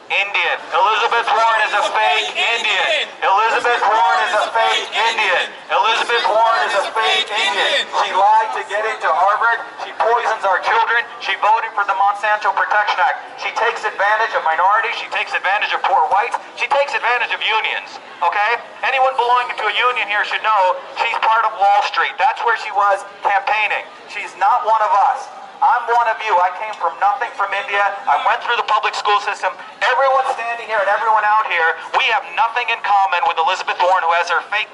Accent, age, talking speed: American, 40-59, 200 wpm